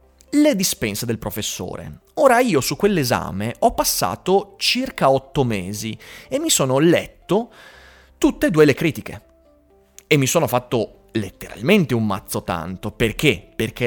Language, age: Italian, 30-49